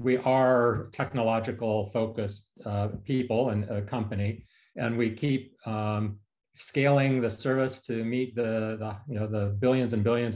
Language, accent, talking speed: English, American, 150 wpm